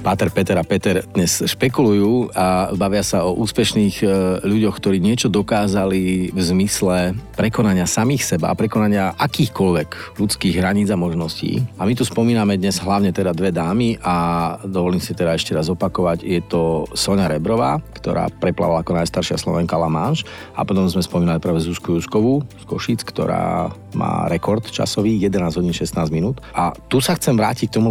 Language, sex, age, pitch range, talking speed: Slovak, male, 40-59, 85-105 Hz, 170 wpm